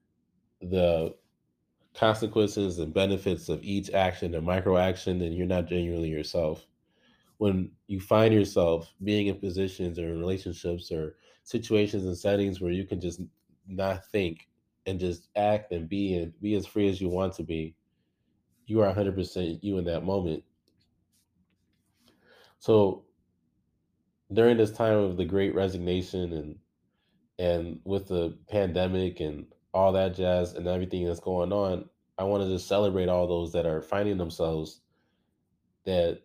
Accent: American